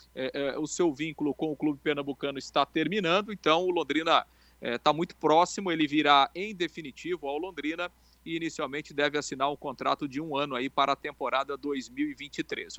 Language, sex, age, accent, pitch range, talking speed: Portuguese, male, 40-59, Brazilian, 135-165 Hz, 165 wpm